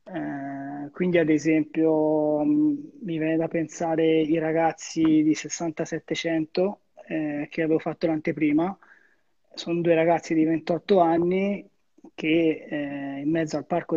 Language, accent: Italian, native